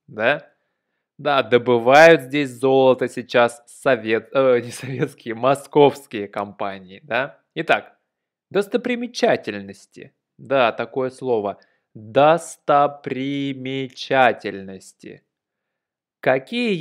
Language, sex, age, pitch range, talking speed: Russian, male, 20-39, 115-140 Hz, 70 wpm